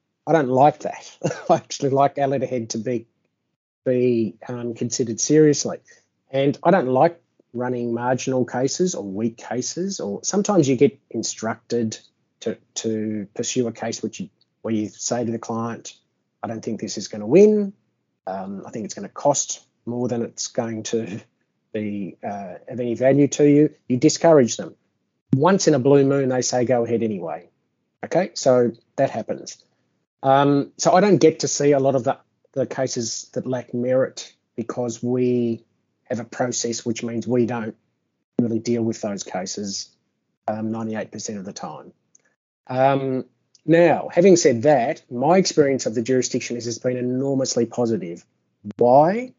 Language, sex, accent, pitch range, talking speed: English, male, Australian, 115-145 Hz, 165 wpm